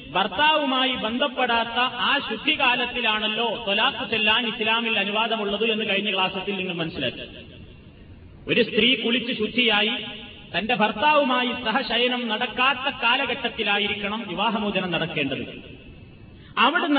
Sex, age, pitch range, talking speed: male, 30-49, 195-255 Hz, 90 wpm